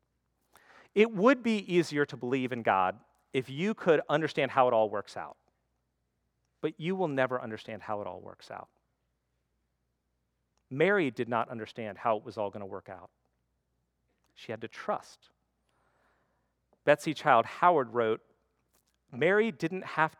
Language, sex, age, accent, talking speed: English, male, 40-59, American, 150 wpm